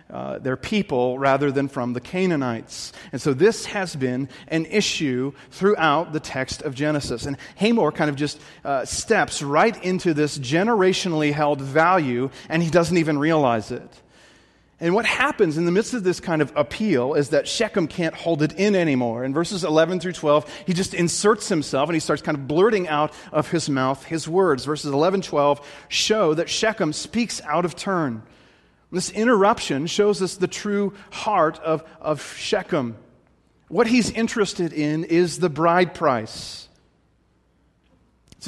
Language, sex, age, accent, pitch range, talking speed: English, male, 30-49, American, 140-180 Hz, 165 wpm